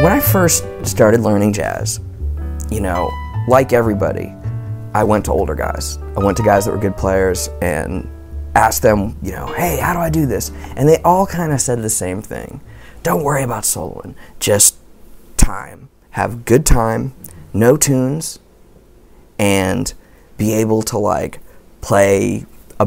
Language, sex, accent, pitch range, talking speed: English, male, American, 95-130 Hz, 160 wpm